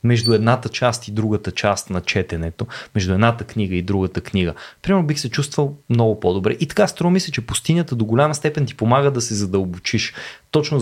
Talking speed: 195 wpm